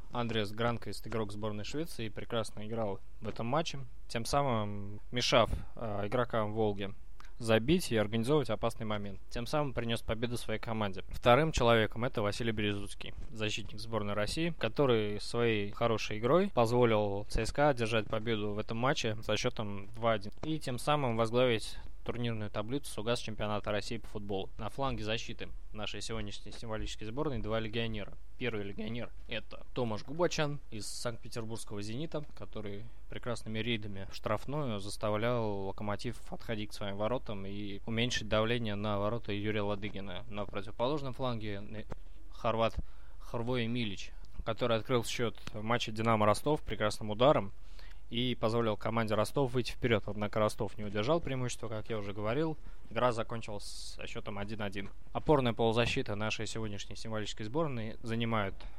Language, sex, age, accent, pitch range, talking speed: Russian, male, 20-39, native, 105-120 Hz, 140 wpm